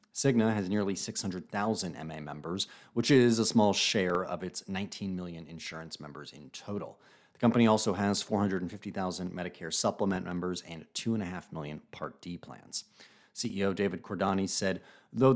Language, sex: English, male